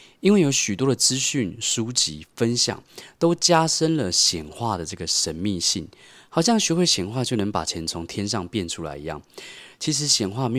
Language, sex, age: Chinese, male, 20-39